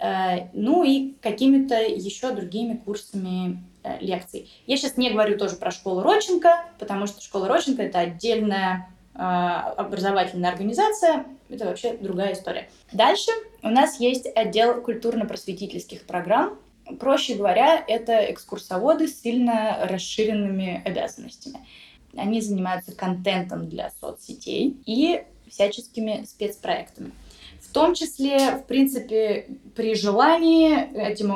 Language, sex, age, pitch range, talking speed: Russian, female, 20-39, 190-260 Hz, 110 wpm